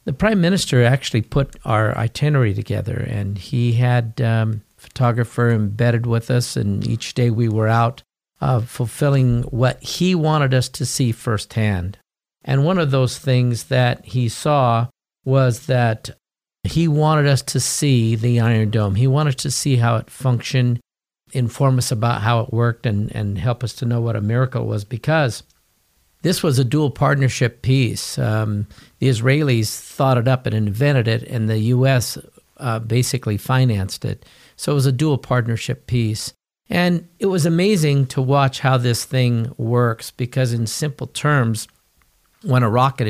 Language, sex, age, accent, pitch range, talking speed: English, male, 50-69, American, 115-135 Hz, 165 wpm